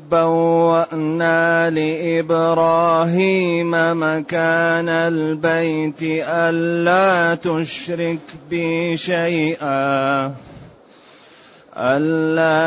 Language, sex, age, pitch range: Arabic, male, 30-49, 160-170 Hz